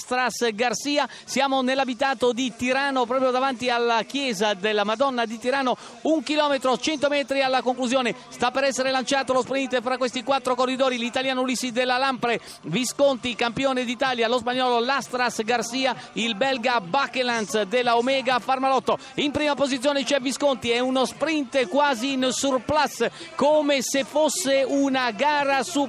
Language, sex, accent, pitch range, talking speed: Italian, male, native, 255-295 Hz, 150 wpm